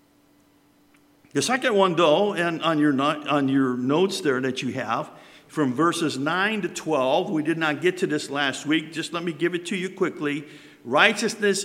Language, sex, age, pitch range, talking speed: English, male, 50-69, 155-205 Hz, 190 wpm